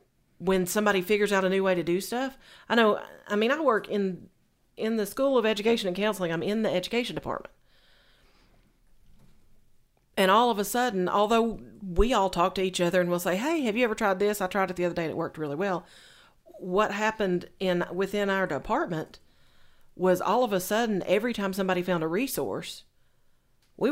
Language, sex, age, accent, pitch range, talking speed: English, female, 40-59, American, 165-205 Hz, 200 wpm